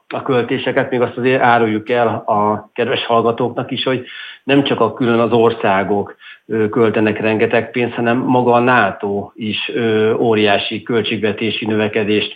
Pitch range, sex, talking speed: 105-115 Hz, male, 140 wpm